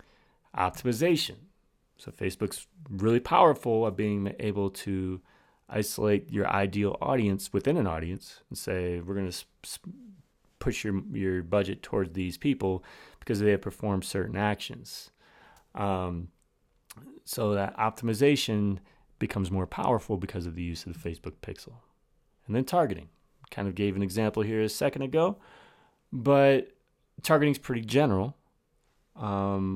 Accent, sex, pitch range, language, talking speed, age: American, male, 95-125 Hz, English, 135 wpm, 30-49